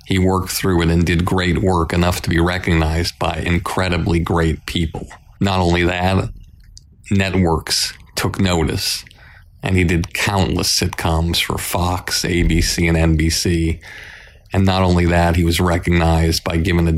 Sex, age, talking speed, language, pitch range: male, 40-59, 150 wpm, English, 85-95 Hz